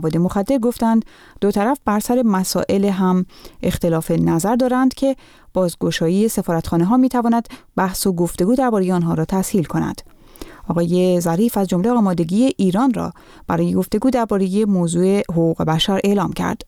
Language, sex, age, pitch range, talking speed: Persian, female, 30-49, 180-225 Hz, 140 wpm